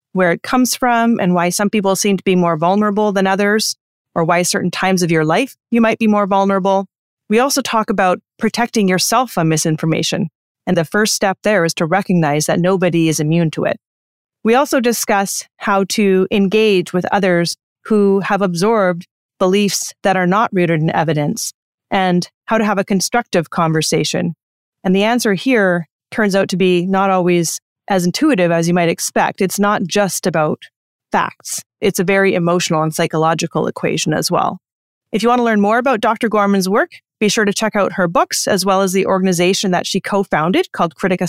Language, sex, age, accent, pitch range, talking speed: English, female, 30-49, American, 175-210 Hz, 190 wpm